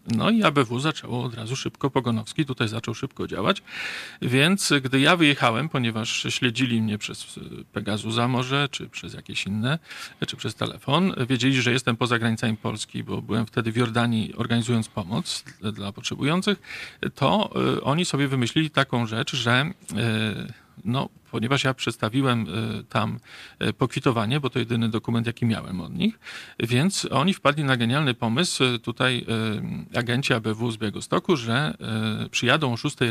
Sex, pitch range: male, 115-140 Hz